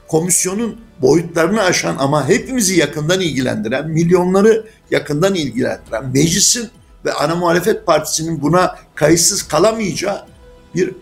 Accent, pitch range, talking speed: native, 150-210 Hz, 105 wpm